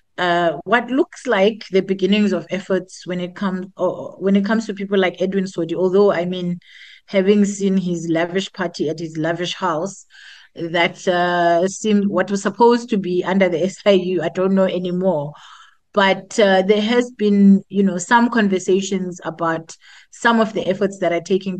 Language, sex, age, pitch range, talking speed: English, female, 30-49, 180-210 Hz, 175 wpm